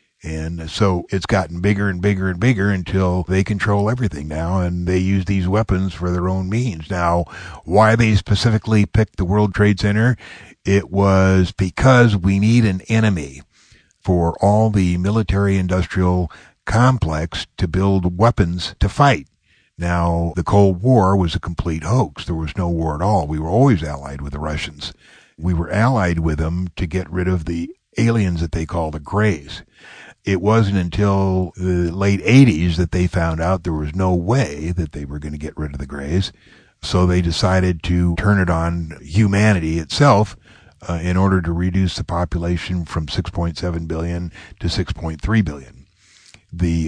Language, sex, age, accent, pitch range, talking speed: English, male, 60-79, American, 85-100 Hz, 170 wpm